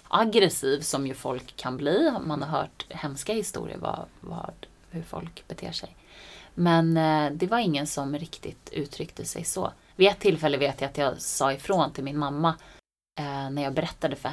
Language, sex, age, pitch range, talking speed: Swedish, female, 30-49, 150-220 Hz, 185 wpm